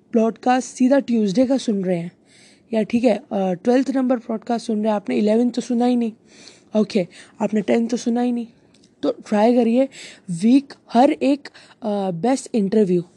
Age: 20-39